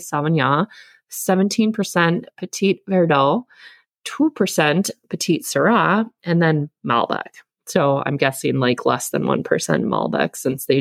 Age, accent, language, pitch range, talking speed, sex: 20-39, American, English, 140-185 Hz, 110 wpm, female